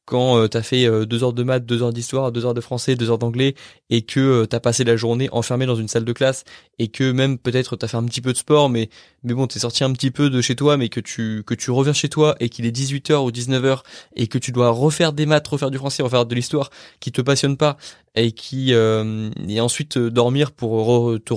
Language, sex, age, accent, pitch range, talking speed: French, male, 20-39, French, 115-135 Hz, 280 wpm